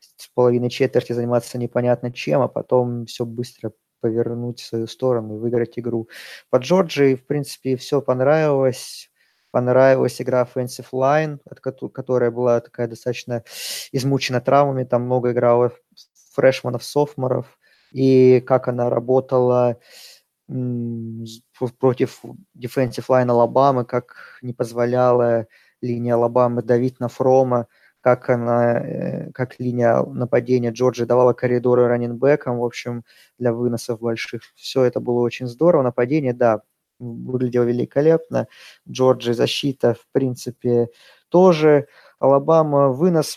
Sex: male